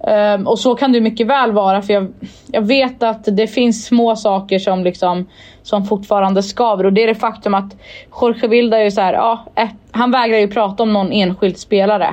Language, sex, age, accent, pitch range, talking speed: Swedish, female, 20-39, native, 195-235 Hz, 215 wpm